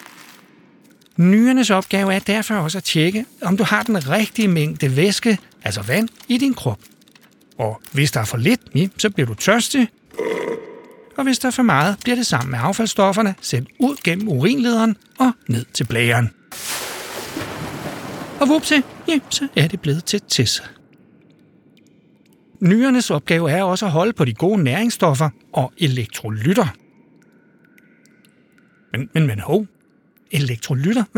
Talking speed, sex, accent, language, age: 140 wpm, male, native, Danish, 60-79